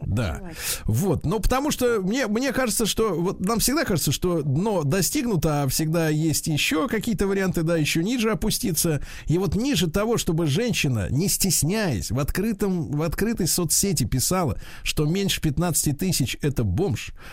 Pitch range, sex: 120-170 Hz, male